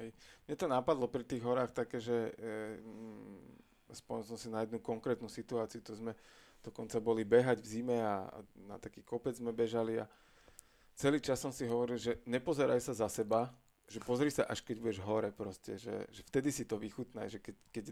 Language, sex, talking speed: Slovak, male, 195 wpm